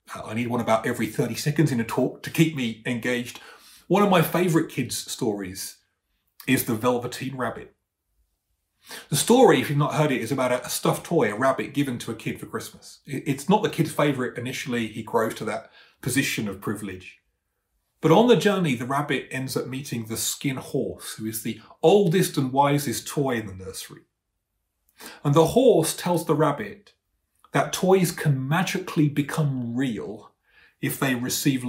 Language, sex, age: English, male, 30-49